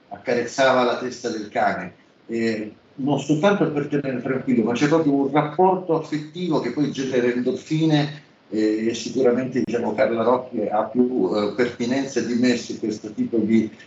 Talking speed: 155 wpm